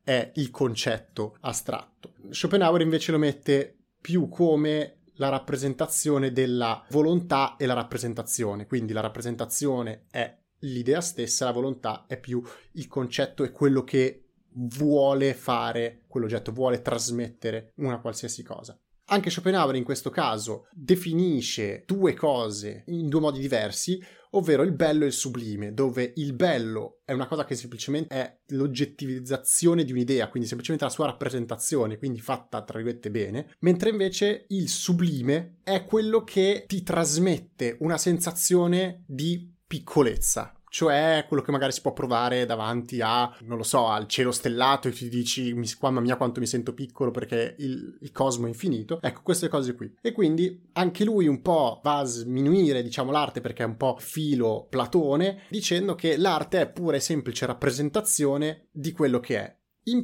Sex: male